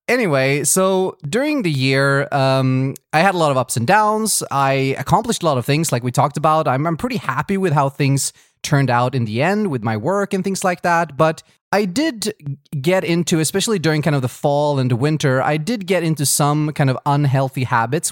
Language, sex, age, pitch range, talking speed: English, male, 20-39, 130-160 Hz, 220 wpm